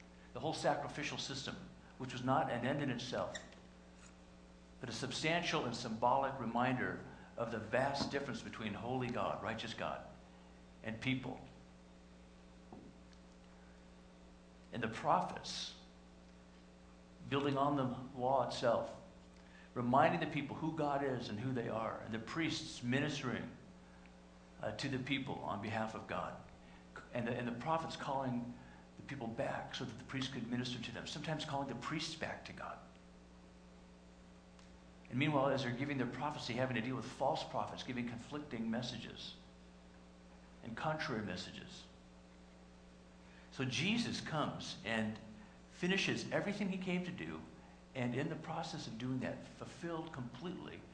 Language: English